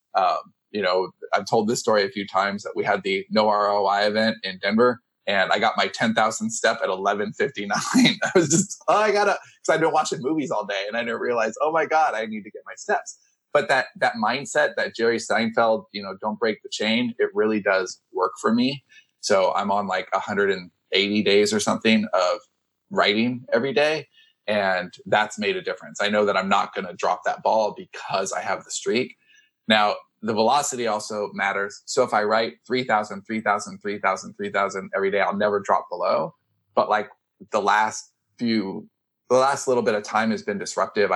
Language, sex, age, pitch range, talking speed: English, male, 20-39, 100-155 Hz, 205 wpm